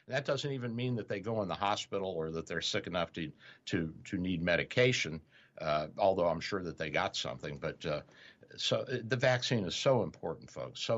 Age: 60-79